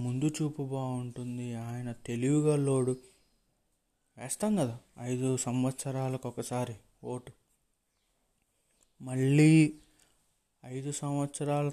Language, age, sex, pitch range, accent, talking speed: Telugu, 20-39, male, 120-145 Hz, native, 65 wpm